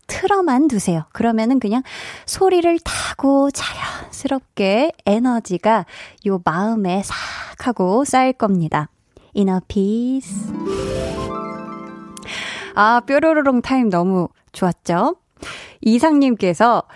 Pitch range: 185-265 Hz